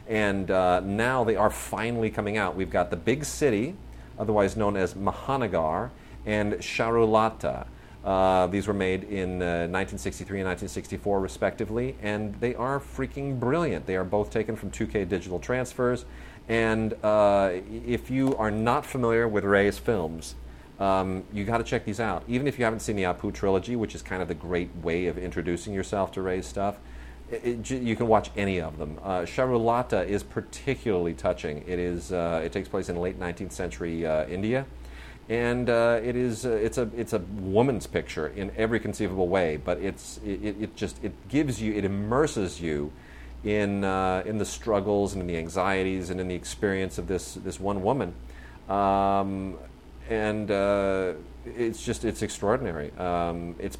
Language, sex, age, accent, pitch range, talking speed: English, male, 40-59, American, 90-110 Hz, 175 wpm